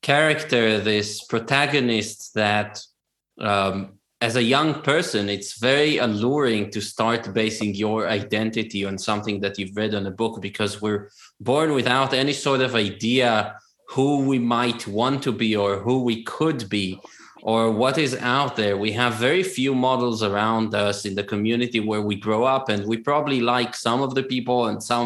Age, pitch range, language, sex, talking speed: 20-39, 105-130 Hz, English, male, 175 wpm